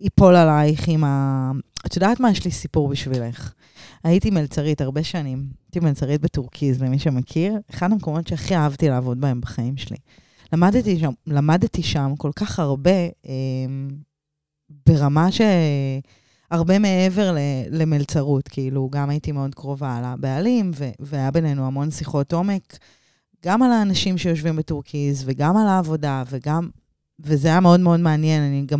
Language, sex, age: Hebrew, female, 20-39